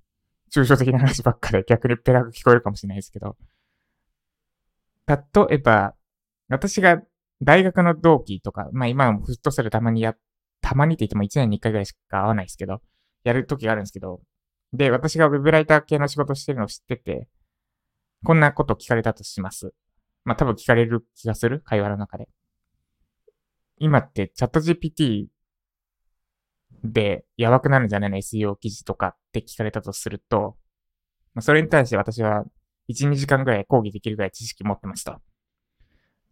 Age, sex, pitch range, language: 20-39, male, 100-140 Hz, Japanese